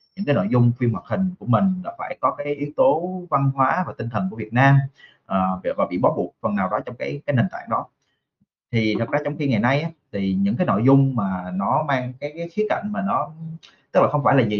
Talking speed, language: 265 wpm, Vietnamese